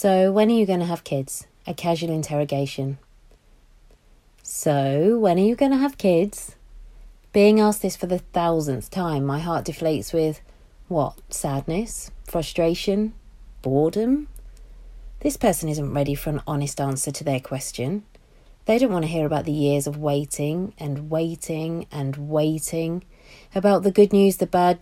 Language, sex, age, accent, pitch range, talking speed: English, female, 30-49, British, 145-180 Hz, 155 wpm